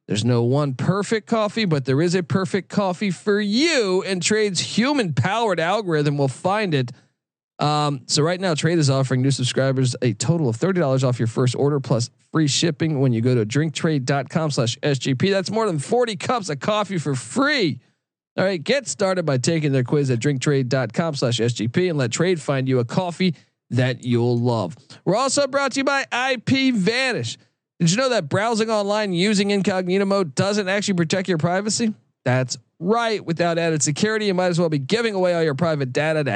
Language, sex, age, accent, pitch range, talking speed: English, male, 40-59, American, 135-185 Hz, 190 wpm